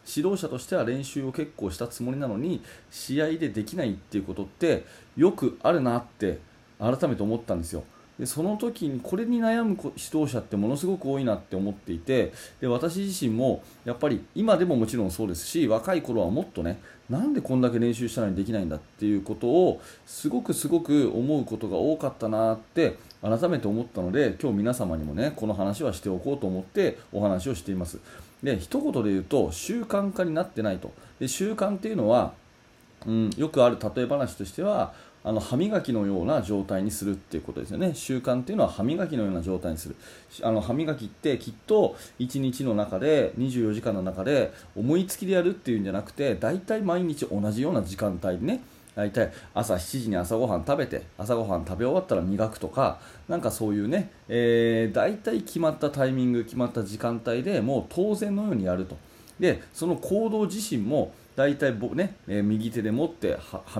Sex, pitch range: male, 100-150 Hz